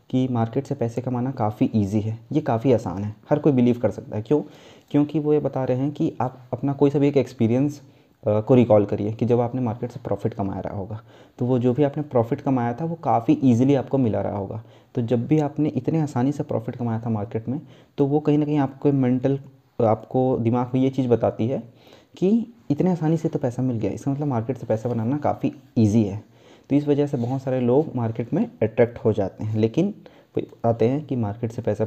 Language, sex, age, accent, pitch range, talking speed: Hindi, male, 30-49, native, 115-140 Hz, 235 wpm